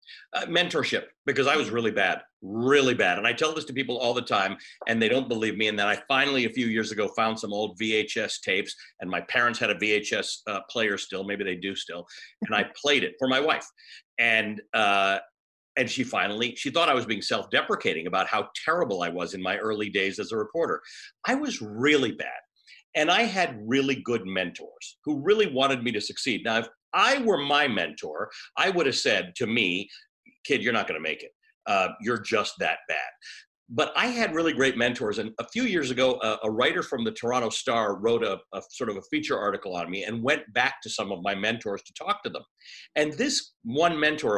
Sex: male